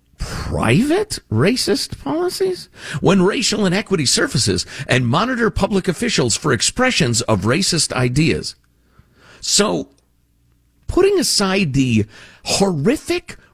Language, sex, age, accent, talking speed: English, male, 50-69, American, 95 wpm